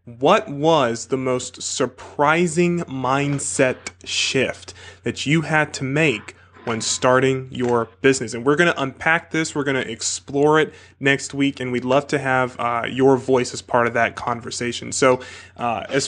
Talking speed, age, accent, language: 170 wpm, 20-39, American, English